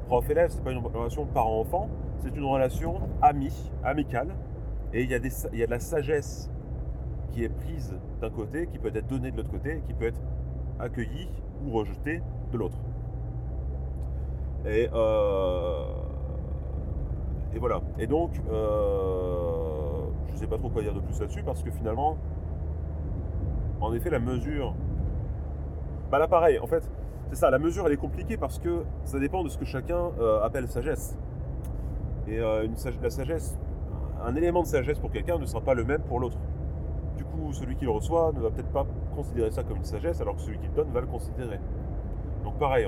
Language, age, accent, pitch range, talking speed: French, 30-49, French, 70-105 Hz, 190 wpm